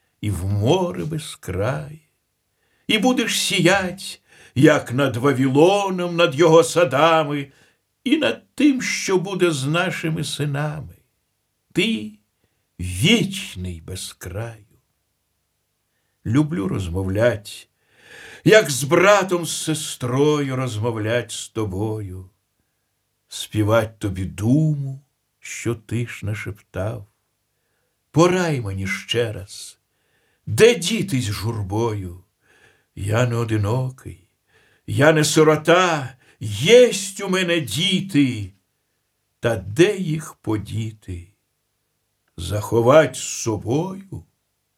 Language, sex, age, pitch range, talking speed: Russian, male, 60-79, 105-165 Hz, 85 wpm